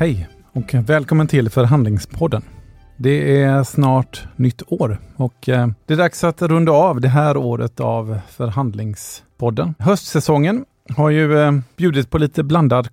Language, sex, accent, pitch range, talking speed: Swedish, male, native, 120-145 Hz, 135 wpm